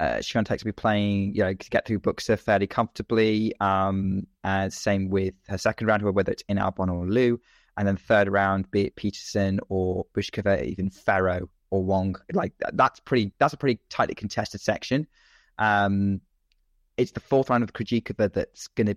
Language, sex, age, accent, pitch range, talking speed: English, male, 20-39, British, 100-115 Hz, 180 wpm